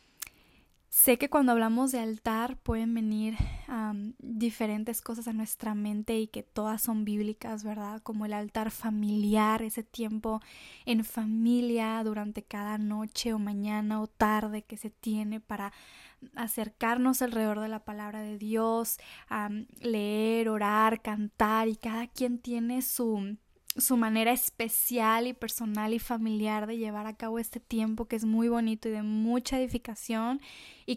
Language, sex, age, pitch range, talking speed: Spanish, female, 10-29, 215-235 Hz, 145 wpm